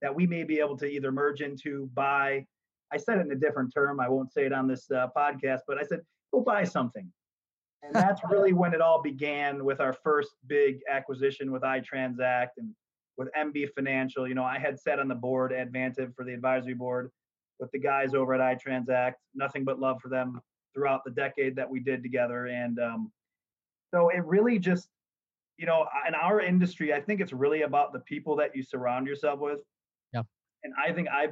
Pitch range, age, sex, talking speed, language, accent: 130-150 Hz, 30-49, male, 205 wpm, English, American